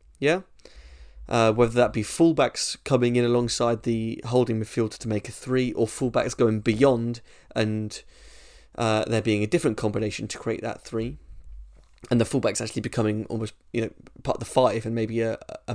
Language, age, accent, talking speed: English, 20-39, British, 180 wpm